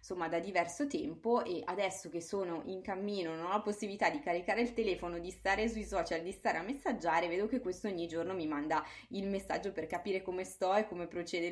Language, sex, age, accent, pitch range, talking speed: Italian, female, 20-39, native, 170-210 Hz, 220 wpm